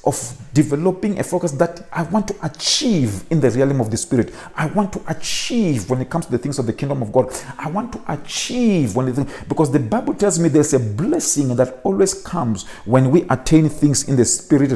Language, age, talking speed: English, 50-69, 220 wpm